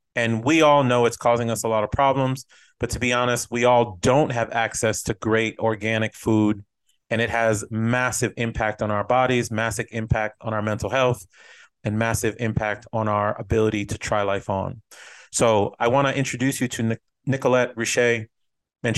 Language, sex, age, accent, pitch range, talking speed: English, male, 30-49, American, 110-125 Hz, 180 wpm